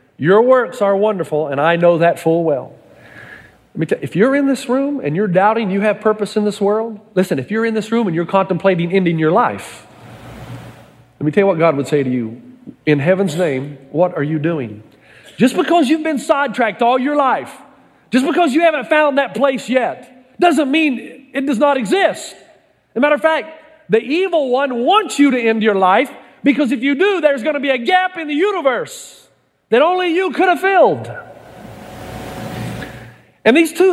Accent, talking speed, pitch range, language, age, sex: American, 195 wpm, 210-295 Hz, English, 40-59, male